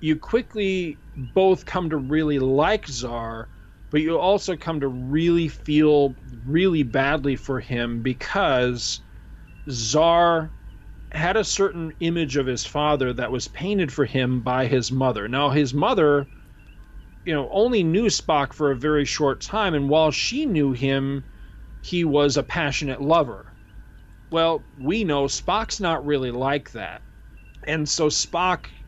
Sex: male